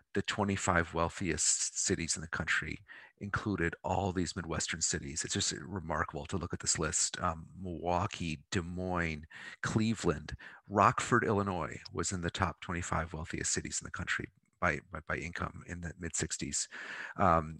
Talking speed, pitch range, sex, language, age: 155 wpm, 85-100 Hz, male, English, 40-59